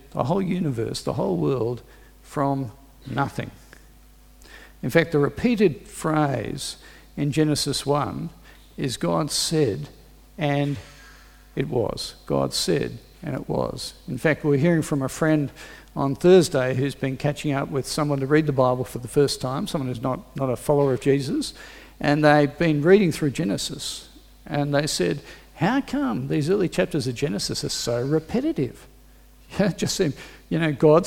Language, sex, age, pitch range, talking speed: English, male, 50-69, 135-165 Hz, 160 wpm